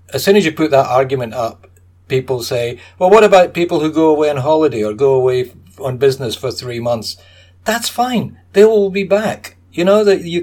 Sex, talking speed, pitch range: male, 215 wpm, 115-160 Hz